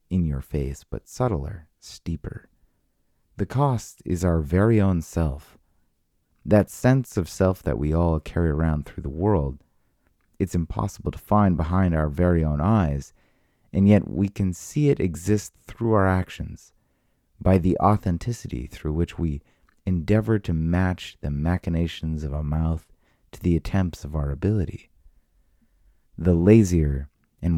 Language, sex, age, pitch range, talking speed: English, male, 30-49, 75-100 Hz, 145 wpm